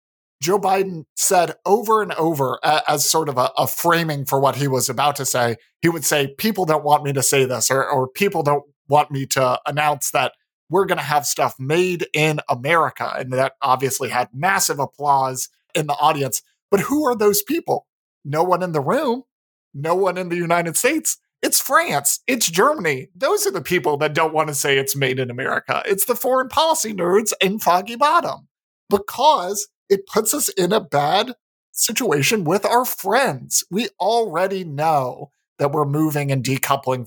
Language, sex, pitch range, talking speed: English, male, 135-200 Hz, 190 wpm